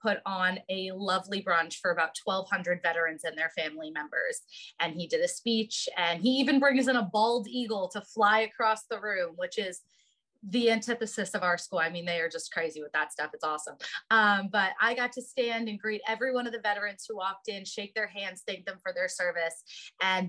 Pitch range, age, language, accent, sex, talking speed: 180-240 Hz, 20-39, English, American, female, 220 wpm